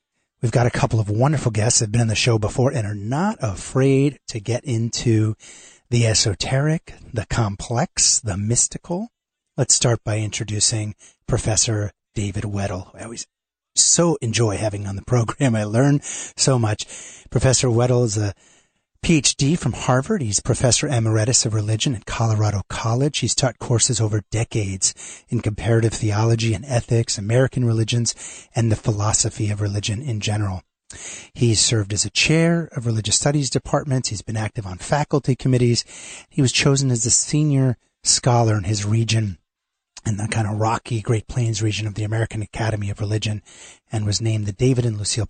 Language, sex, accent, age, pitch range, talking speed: English, male, American, 30-49, 110-130 Hz, 165 wpm